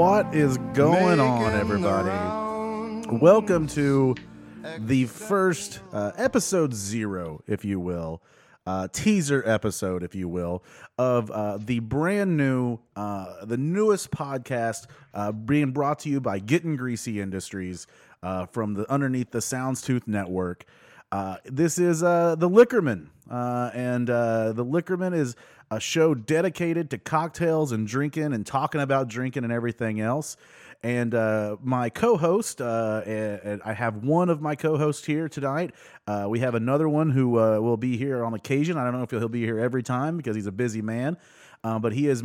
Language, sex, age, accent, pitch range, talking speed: English, male, 30-49, American, 110-155 Hz, 165 wpm